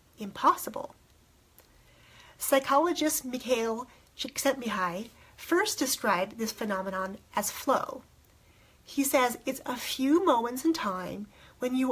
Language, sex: English, female